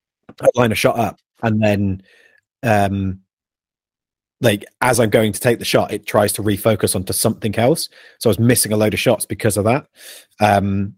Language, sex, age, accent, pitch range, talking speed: English, male, 30-49, British, 95-110 Hz, 185 wpm